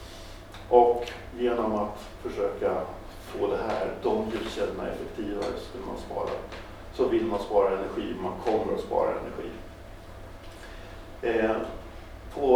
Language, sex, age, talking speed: Swedish, male, 50-69, 115 wpm